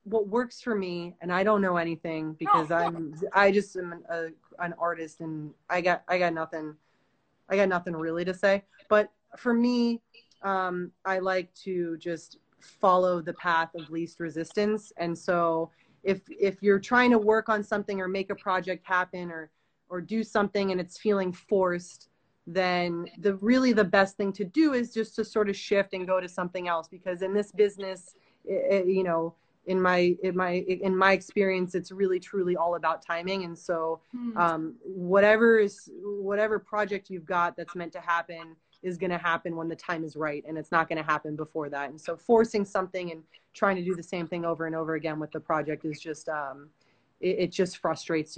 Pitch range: 160-195 Hz